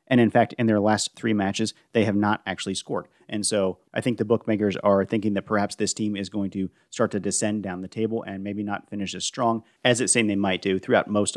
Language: English